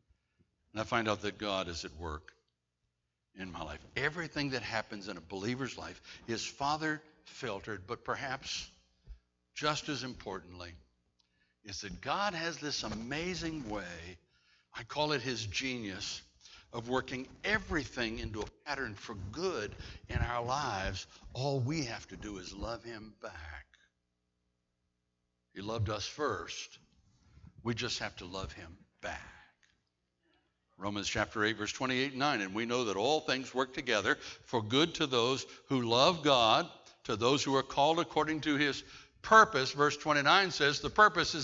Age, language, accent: 60-79, English, American